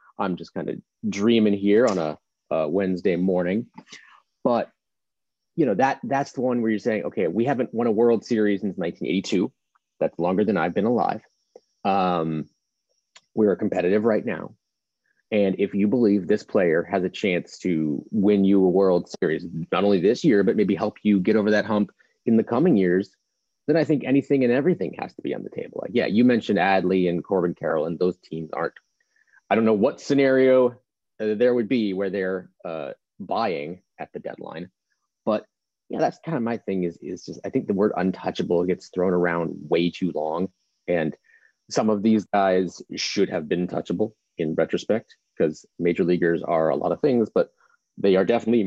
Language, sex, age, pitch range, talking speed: English, male, 30-49, 90-115 Hz, 190 wpm